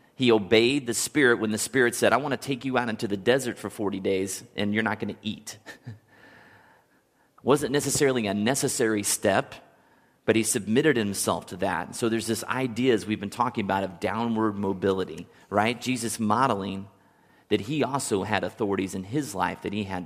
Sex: male